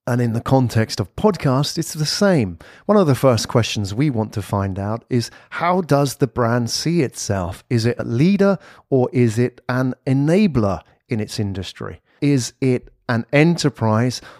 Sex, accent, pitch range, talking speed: male, British, 110-140 Hz, 175 wpm